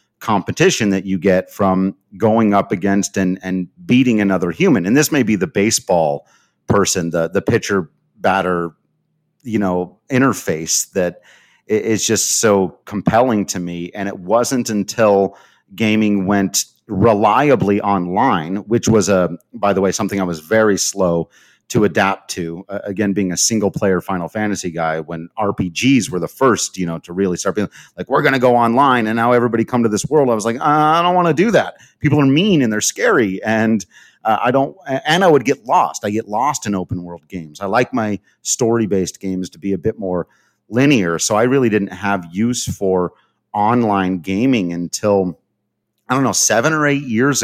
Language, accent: English, American